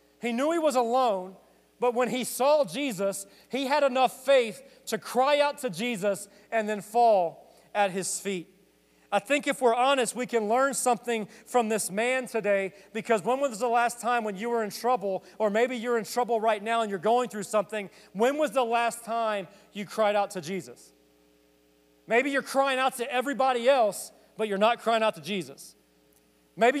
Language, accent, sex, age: English, American, male, 40-59